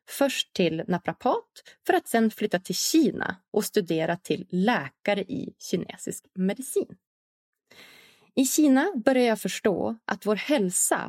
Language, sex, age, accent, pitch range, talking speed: English, female, 30-49, Swedish, 185-260 Hz, 130 wpm